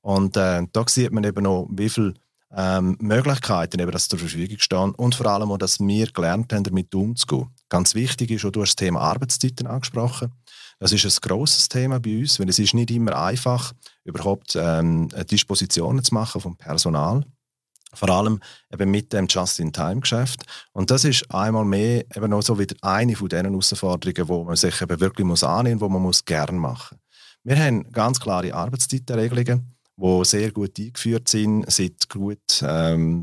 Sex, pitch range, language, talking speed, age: male, 95-120 Hz, German, 180 wpm, 40-59